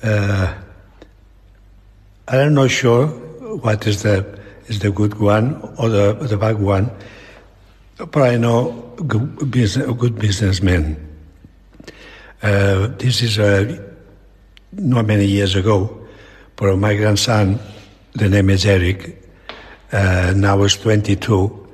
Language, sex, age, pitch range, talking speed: English, male, 60-79, 100-120 Hz, 120 wpm